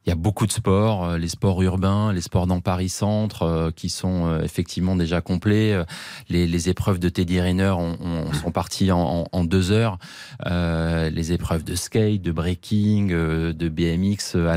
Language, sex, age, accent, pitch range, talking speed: French, male, 20-39, French, 90-115 Hz, 175 wpm